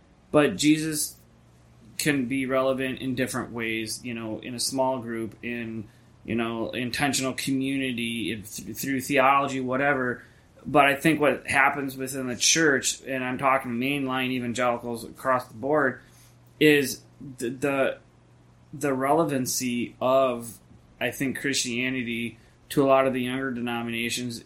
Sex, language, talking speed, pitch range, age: male, English, 130 wpm, 120-135 Hz, 20-39